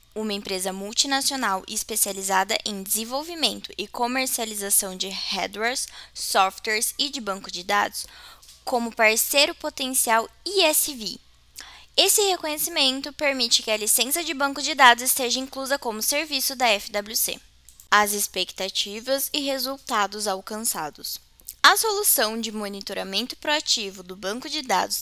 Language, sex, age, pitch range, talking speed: Portuguese, female, 10-29, 210-290 Hz, 120 wpm